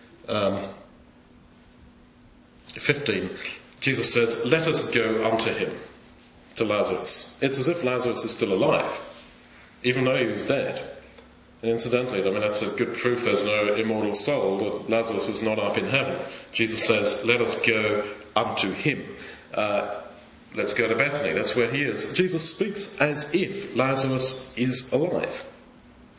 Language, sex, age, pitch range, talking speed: English, male, 40-59, 110-150 Hz, 150 wpm